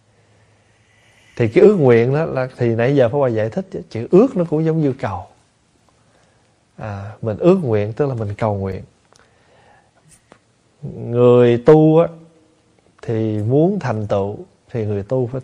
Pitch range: 105-135 Hz